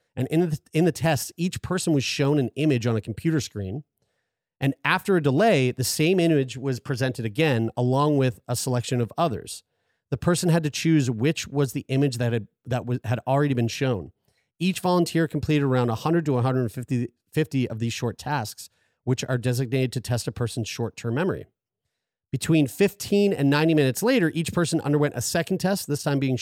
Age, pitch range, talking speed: 30-49, 120-155 Hz, 195 wpm